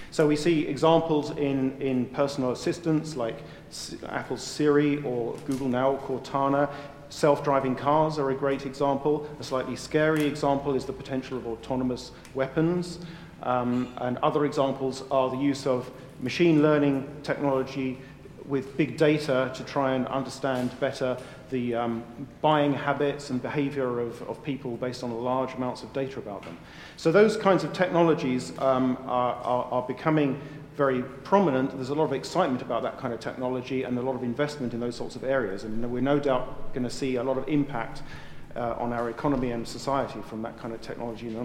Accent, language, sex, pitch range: British, English, male, 125-150 Hz